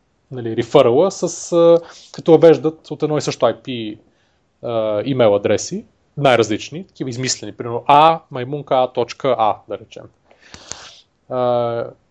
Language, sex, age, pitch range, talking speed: Bulgarian, male, 30-49, 115-145 Hz, 95 wpm